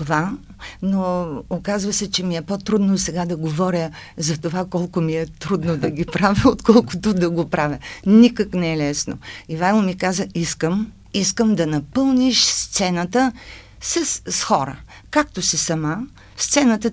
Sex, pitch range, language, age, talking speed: female, 165-225 Hz, Bulgarian, 50-69, 155 wpm